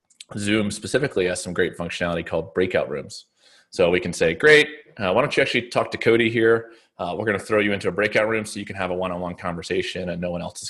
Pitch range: 85-95 Hz